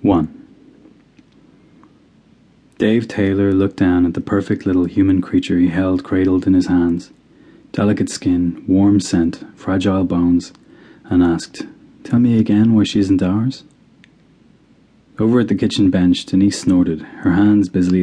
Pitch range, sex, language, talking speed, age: 85-100 Hz, male, English, 140 wpm, 30-49